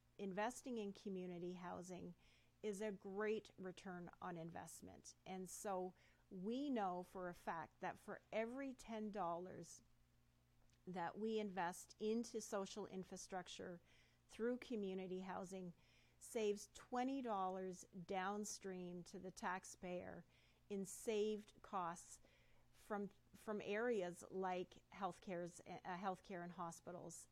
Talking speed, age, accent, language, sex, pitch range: 105 wpm, 40-59, American, English, female, 180-215 Hz